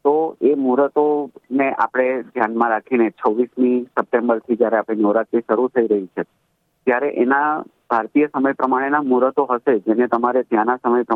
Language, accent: Gujarati, native